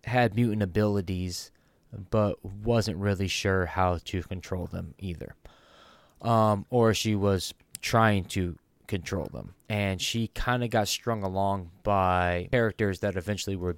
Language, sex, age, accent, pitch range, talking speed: English, male, 20-39, American, 90-110 Hz, 140 wpm